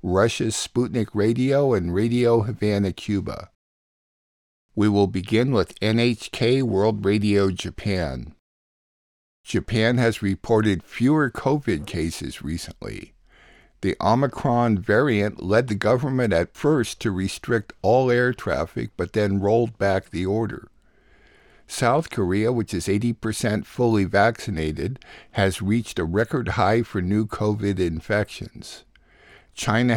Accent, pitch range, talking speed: American, 95-115 Hz, 115 wpm